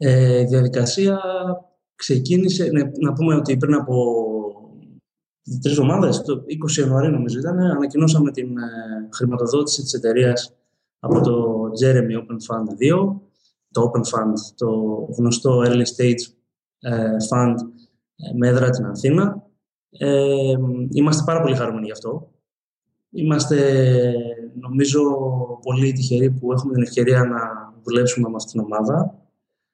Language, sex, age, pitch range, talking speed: Greek, male, 20-39, 120-150 Hz, 140 wpm